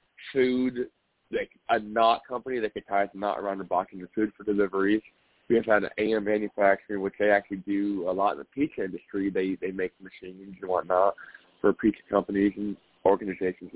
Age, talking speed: 20-39, 190 wpm